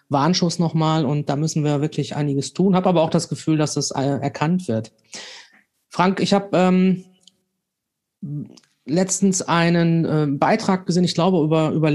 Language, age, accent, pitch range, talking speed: German, 30-49, German, 155-180 Hz, 155 wpm